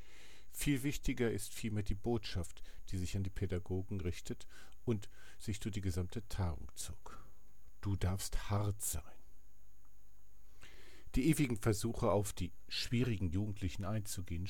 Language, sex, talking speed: German, male, 130 wpm